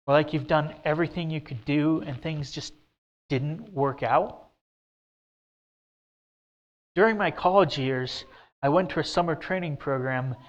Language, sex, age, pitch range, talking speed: English, male, 30-49, 130-160 Hz, 145 wpm